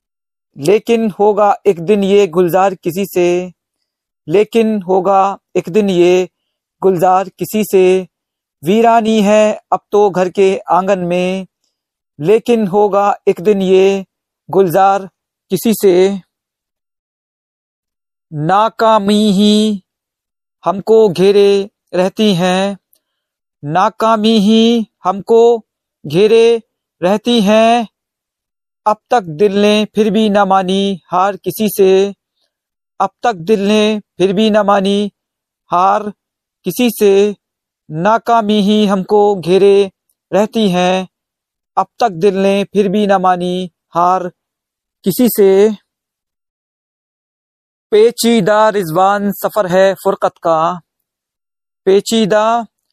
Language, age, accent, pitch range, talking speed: Hindi, 50-69, native, 180-215 Hz, 100 wpm